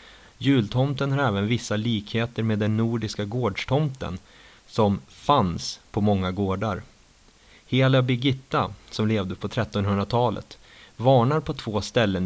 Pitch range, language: 100-125 Hz, Swedish